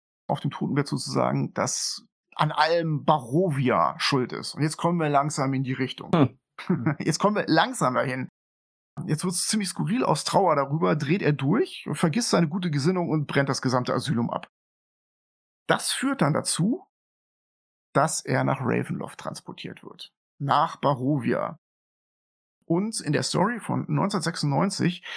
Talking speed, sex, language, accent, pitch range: 150 wpm, male, German, German, 135-180 Hz